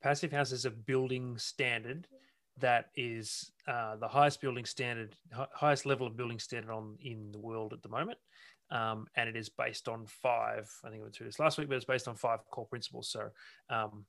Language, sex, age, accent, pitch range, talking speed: English, male, 30-49, Australian, 110-130 Hz, 205 wpm